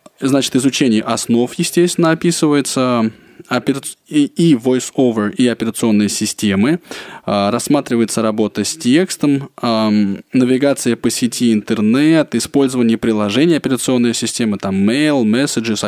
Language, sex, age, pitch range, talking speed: Russian, male, 20-39, 110-145 Hz, 95 wpm